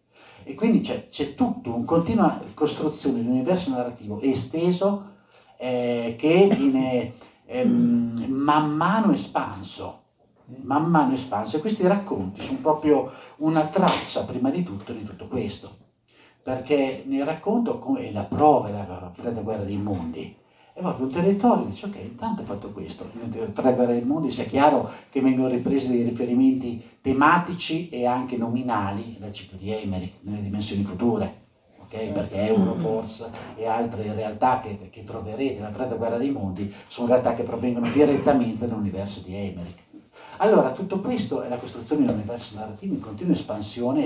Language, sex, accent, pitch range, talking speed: Italian, male, native, 110-155 Hz, 155 wpm